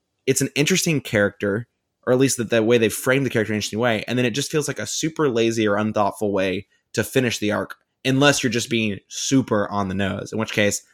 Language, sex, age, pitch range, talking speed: English, male, 20-39, 105-125 Hz, 245 wpm